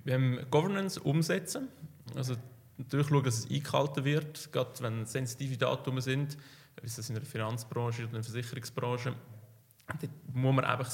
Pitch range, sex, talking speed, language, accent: 120-140 Hz, male, 160 wpm, German, Austrian